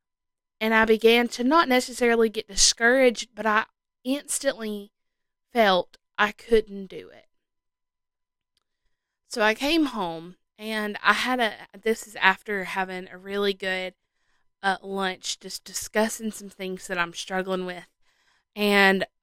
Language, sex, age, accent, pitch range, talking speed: English, female, 20-39, American, 190-230 Hz, 130 wpm